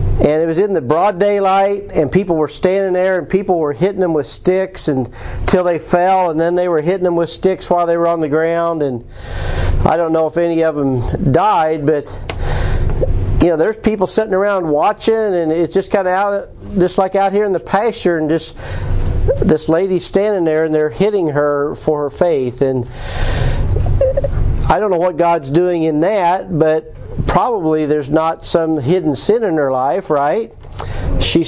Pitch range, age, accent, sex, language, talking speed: 130-180 Hz, 50-69, American, male, English, 195 wpm